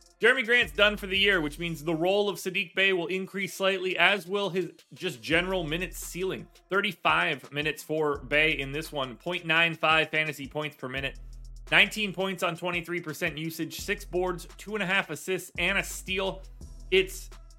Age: 30-49